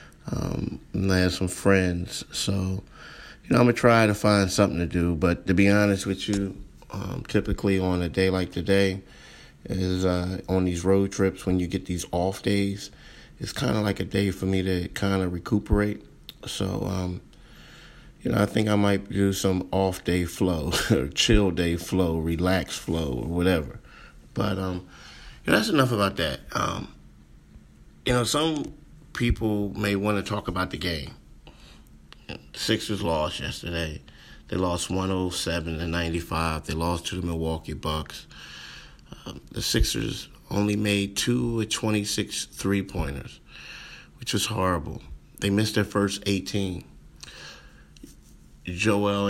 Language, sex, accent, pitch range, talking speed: English, male, American, 90-100 Hz, 155 wpm